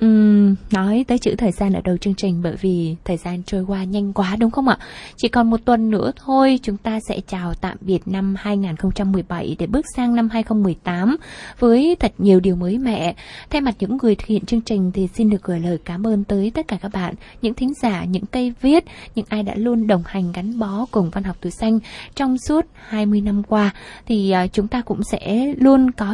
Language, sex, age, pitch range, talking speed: Vietnamese, female, 20-39, 195-235 Hz, 225 wpm